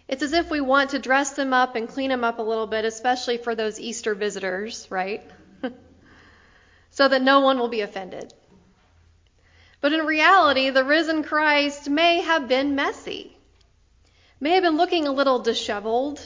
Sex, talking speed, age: female, 170 wpm, 40-59